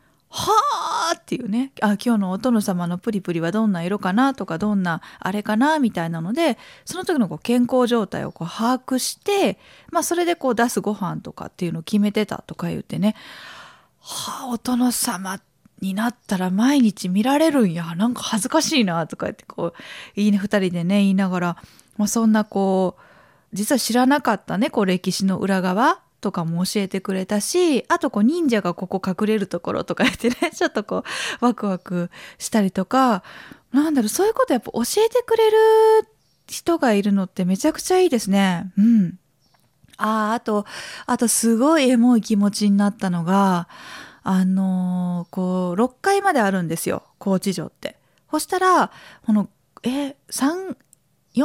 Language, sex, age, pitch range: Japanese, female, 20-39, 190-270 Hz